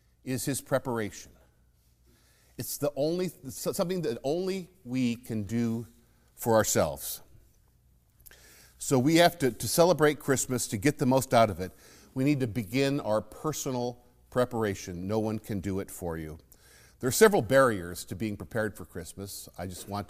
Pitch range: 100-135 Hz